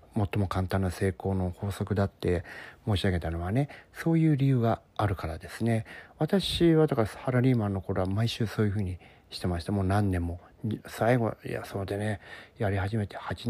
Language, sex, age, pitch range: Japanese, male, 40-59, 90-115 Hz